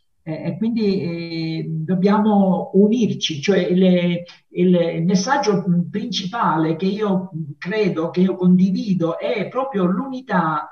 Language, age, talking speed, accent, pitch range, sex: Italian, 50-69, 110 wpm, native, 180-230 Hz, male